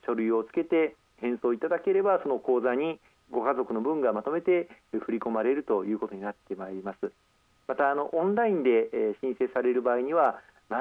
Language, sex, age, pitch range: Japanese, male, 40-59, 120-195 Hz